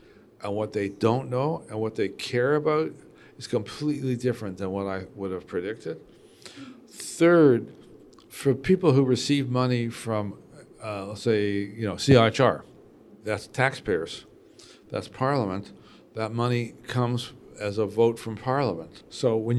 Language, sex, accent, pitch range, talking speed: English, male, American, 105-125 Hz, 140 wpm